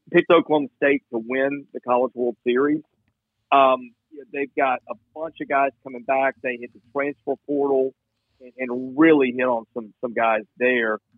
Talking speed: 170 wpm